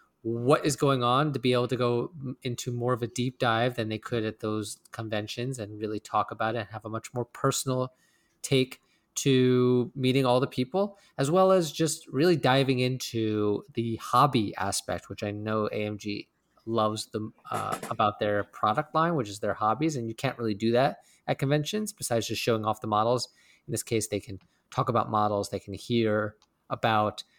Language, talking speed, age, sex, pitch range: English, 195 wpm, 20-39, male, 110-135 Hz